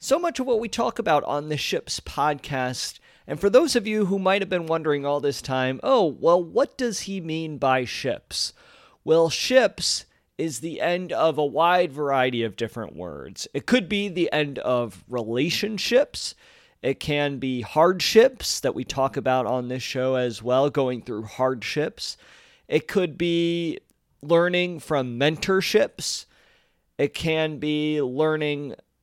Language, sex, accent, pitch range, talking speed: English, male, American, 130-175 Hz, 160 wpm